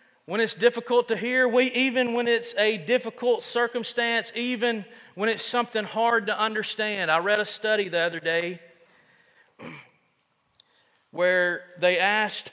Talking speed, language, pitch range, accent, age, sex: 135 wpm, English, 175-230 Hz, American, 40-59, male